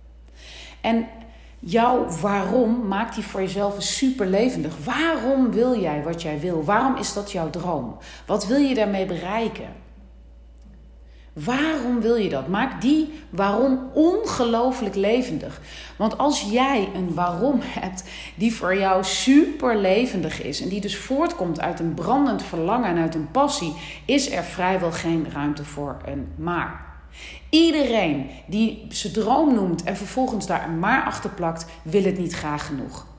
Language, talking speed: Dutch, 150 wpm